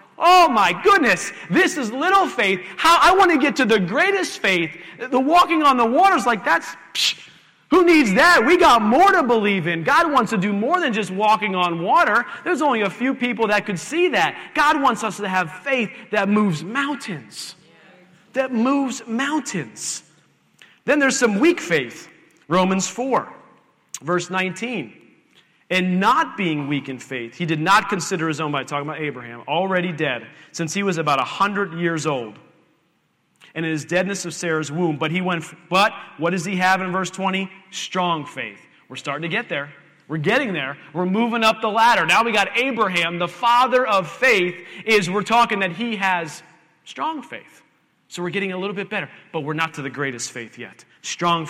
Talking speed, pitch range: 190 wpm, 170-235 Hz